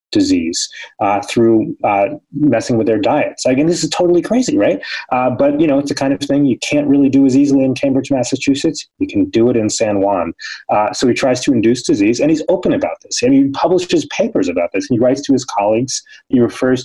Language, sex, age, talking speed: English, male, 30-49, 225 wpm